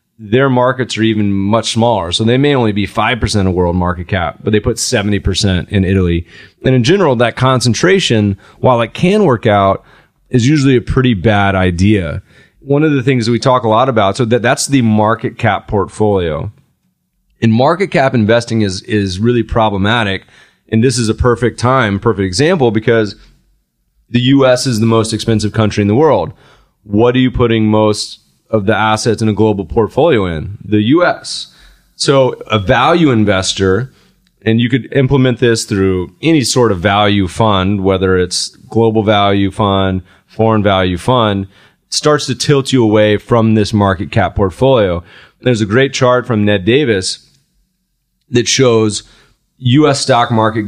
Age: 30-49